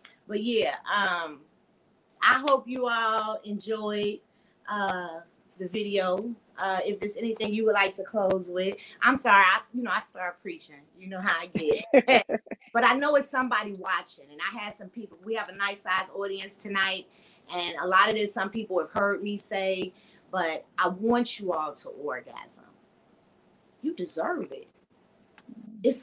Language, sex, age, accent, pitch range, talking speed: English, female, 30-49, American, 190-245 Hz, 170 wpm